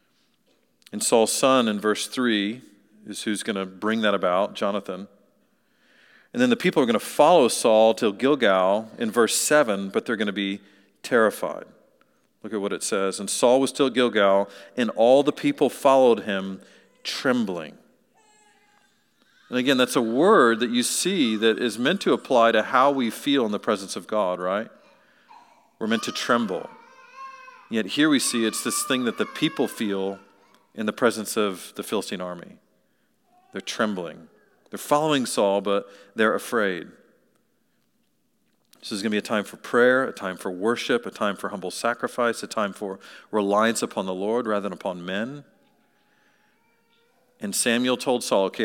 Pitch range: 100-150 Hz